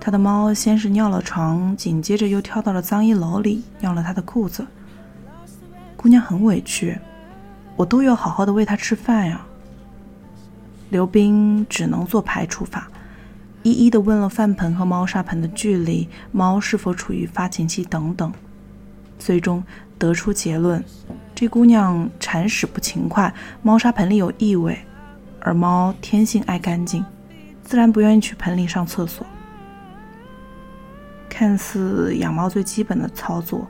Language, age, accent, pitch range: Chinese, 20-39, native, 170-215 Hz